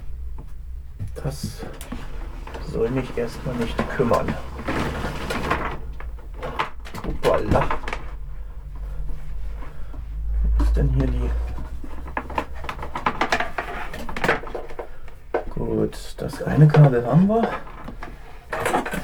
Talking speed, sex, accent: 60 wpm, male, German